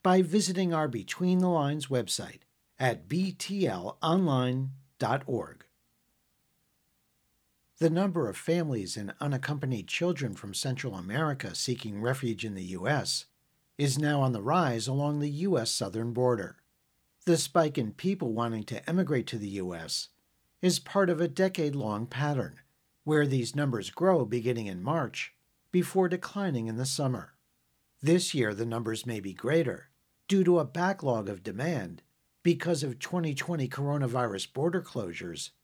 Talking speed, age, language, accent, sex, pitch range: 135 wpm, 50-69, English, American, male, 115-170 Hz